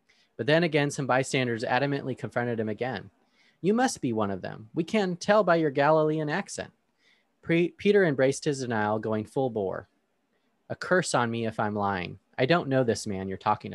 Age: 30-49